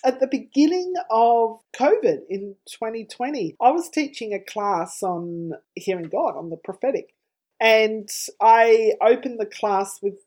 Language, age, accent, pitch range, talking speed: English, 30-49, Australian, 185-270 Hz, 140 wpm